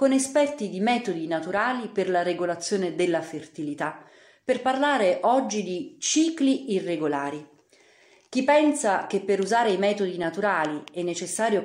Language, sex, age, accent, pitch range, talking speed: Italian, female, 40-59, native, 170-245 Hz, 135 wpm